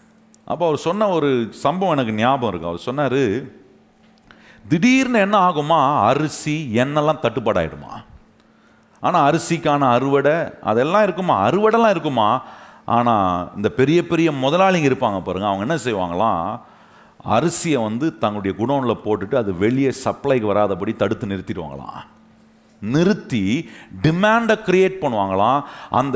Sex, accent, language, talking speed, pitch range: male, native, Tamil, 110 wpm, 115-190 Hz